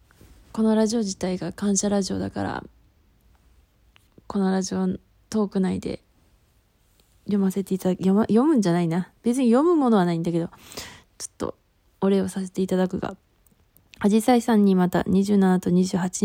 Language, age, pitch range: Japanese, 20-39, 180-215 Hz